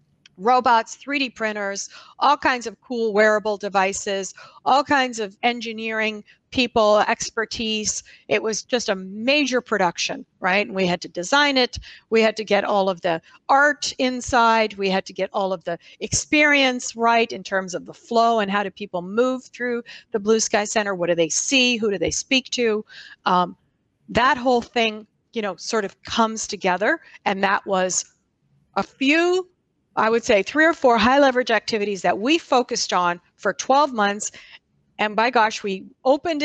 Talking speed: 175 wpm